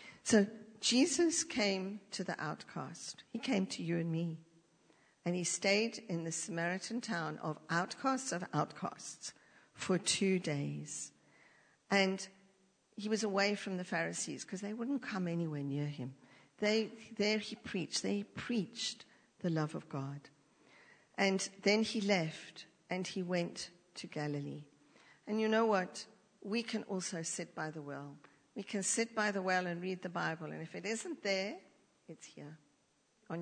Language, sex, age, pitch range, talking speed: English, female, 50-69, 170-220 Hz, 160 wpm